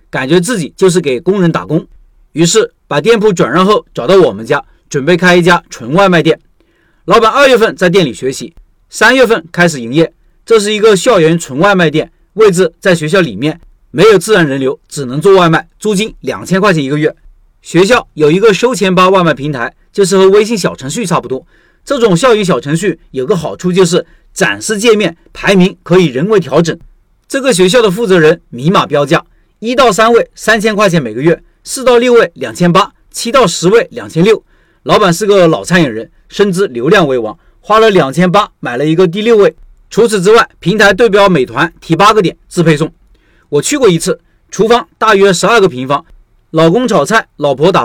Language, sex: Chinese, male